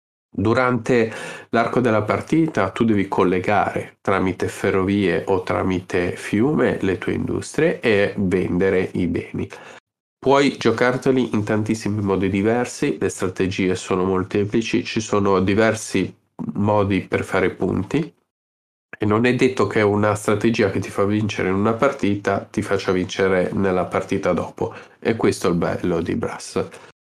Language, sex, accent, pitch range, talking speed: Italian, male, native, 95-115 Hz, 140 wpm